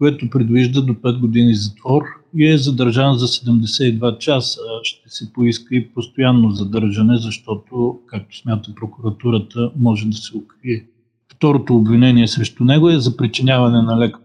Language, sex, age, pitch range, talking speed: Bulgarian, male, 40-59, 110-125 Hz, 145 wpm